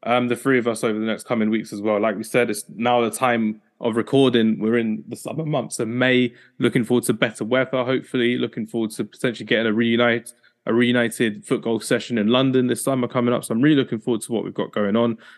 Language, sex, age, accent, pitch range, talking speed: English, male, 20-39, British, 110-125 Hz, 240 wpm